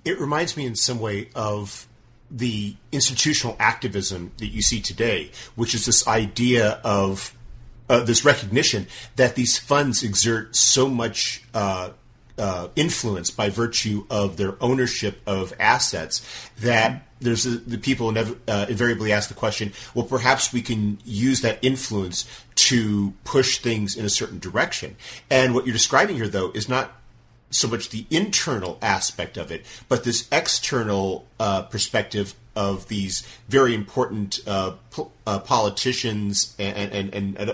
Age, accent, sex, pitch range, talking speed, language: 40-59, American, male, 105-125 Hz, 150 wpm, English